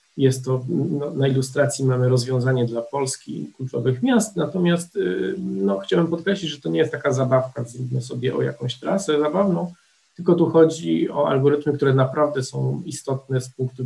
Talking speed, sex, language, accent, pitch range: 165 wpm, male, Polish, native, 125-160 Hz